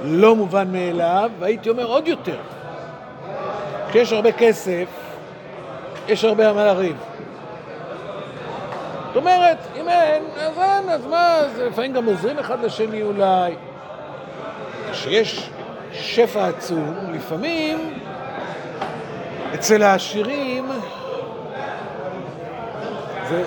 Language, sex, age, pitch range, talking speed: Hebrew, male, 60-79, 210-255 Hz, 90 wpm